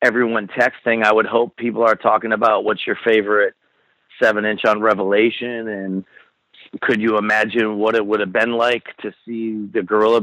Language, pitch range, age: English, 110-145 Hz, 40-59